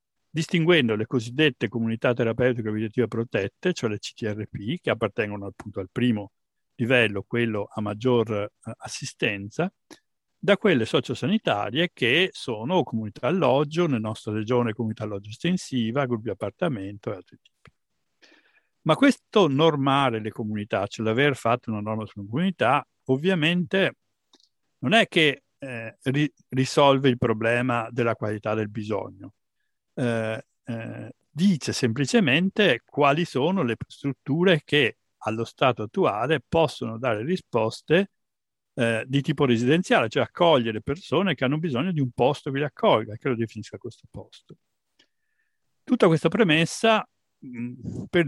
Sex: male